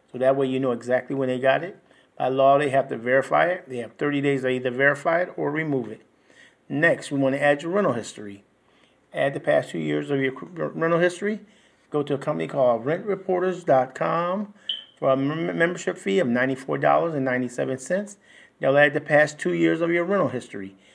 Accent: American